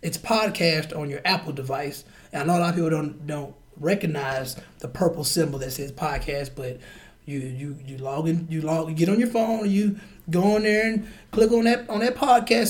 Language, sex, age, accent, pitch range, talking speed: English, male, 20-39, American, 145-195 Hz, 215 wpm